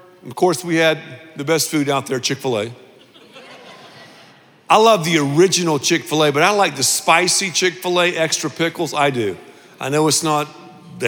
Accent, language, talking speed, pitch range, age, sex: American, English, 200 wpm, 120-160 Hz, 50-69, male